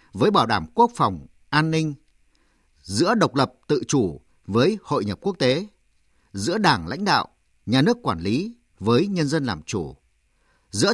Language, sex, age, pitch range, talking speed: Vietnamese, male, 50-69, 115-180 Hz, 170 wpm